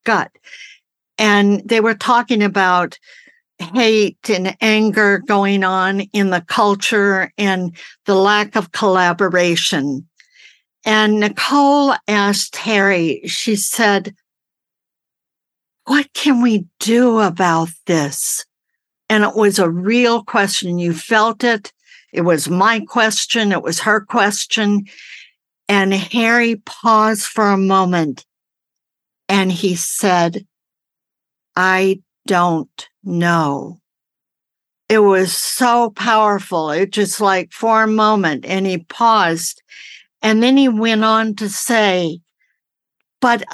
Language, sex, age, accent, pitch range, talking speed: English, female, 60-79, American, 190-230 Hz, 110 wpm